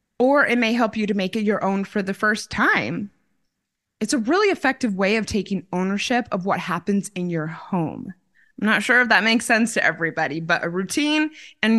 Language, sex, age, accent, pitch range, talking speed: English, female, 20-39, American, 185-255 Hz, 210 wpm